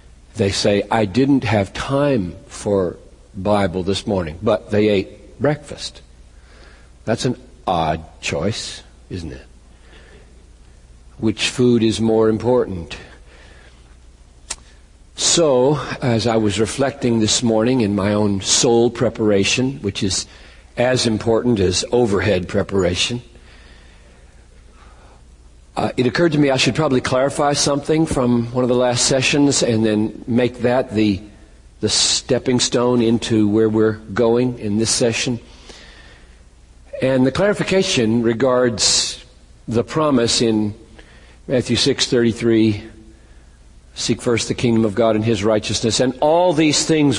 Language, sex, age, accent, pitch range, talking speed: English, male, 60-79, American, 85-125 Hz, 125 wpm